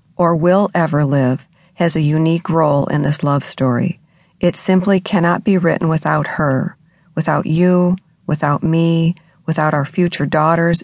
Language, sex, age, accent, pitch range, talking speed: English, female, 50-69, American, 150-180 Hz, 150 wpm